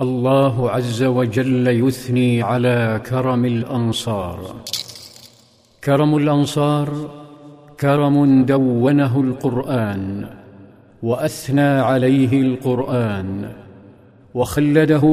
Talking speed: 65 wpm